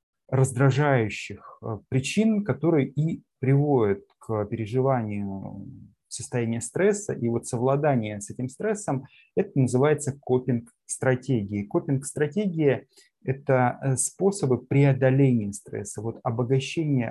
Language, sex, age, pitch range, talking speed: Russian, male, 20-39, 115-140 Hz, 90 wpm